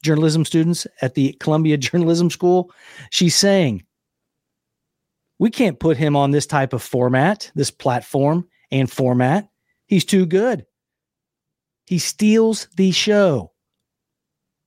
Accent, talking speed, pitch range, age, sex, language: American, 120 wpm, 135-180 Hz, 40-59, male, English